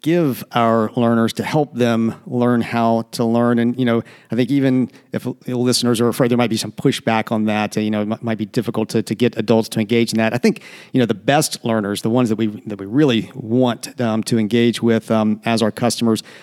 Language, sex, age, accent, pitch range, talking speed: English, male, 50-69, American, 115-135 Hz, 235 wpm